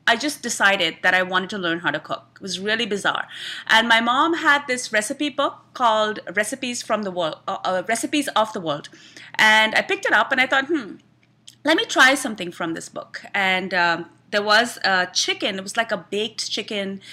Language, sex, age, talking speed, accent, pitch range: English, female, 30-49, 215 wpm, Indian, 195-250 Hz